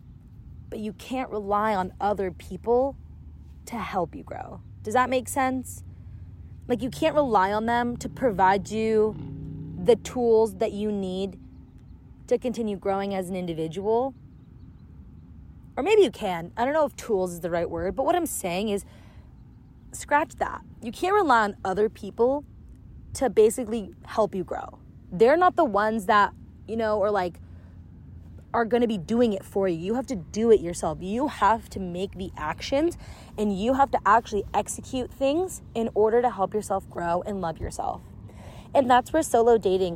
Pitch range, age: 185-255 Hz, 20-39